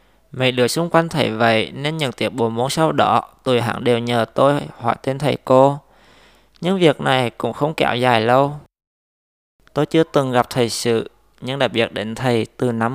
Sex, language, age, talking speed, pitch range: male, Vietnamese, 20-39, 200 wpm, 115-140 Hz